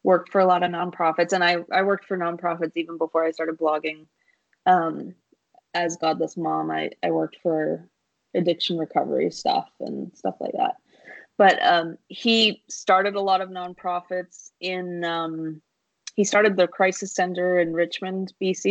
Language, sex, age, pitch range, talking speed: English, female, 20-39, 170-200 Hz, 160 wpm